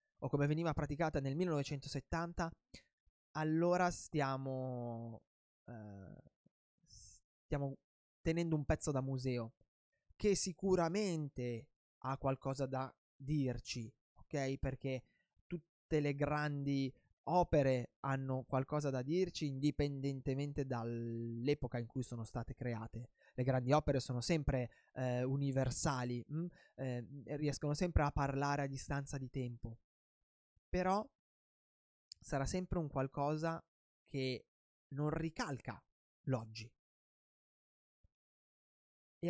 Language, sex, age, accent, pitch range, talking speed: Italian, male, 20-39, native, 125-160 Hz, 100 wpm